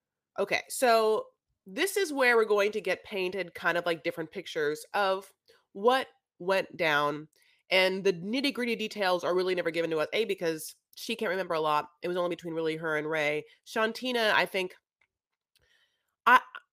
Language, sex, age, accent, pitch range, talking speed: English, female, 30-49, American, 170-225 Hz, 170 wpm